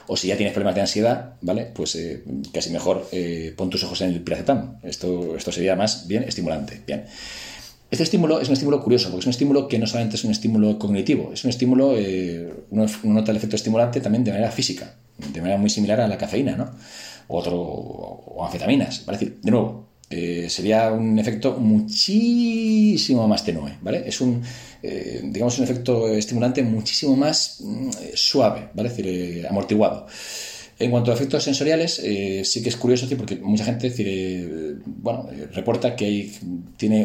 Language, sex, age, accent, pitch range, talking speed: Spanish, male, 40-59, Spanish, 95-125 Hz, 195 wpm